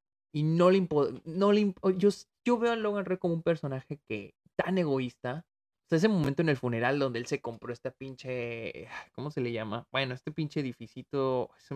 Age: 20-39